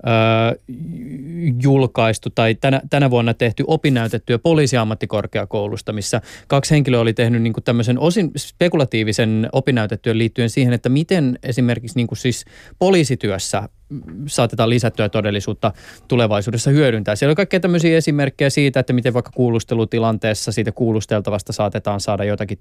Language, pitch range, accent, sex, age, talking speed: Finnish, 105-125 Hz, native, male, 20-39, 120 wpm